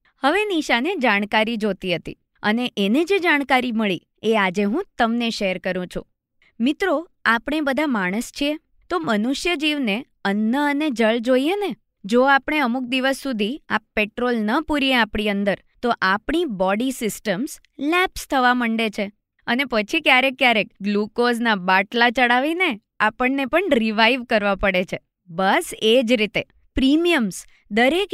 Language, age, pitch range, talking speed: Gujarati, 20-39, 210-285 Hz, 145 wpm